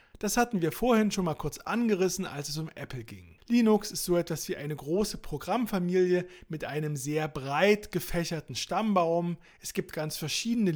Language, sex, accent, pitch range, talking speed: German, male, German, 150-195 Hz, 175 wpm